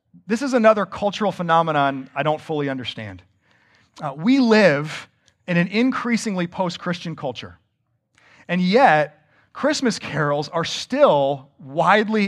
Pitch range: 140-200 Hz